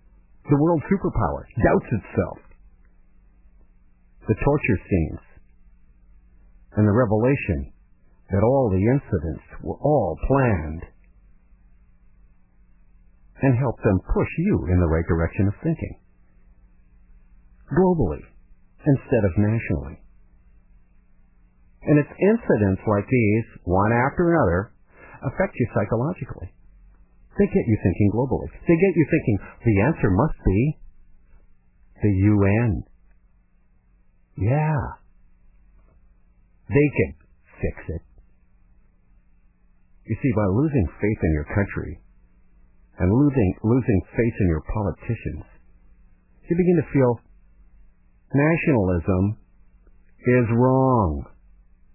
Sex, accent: male, American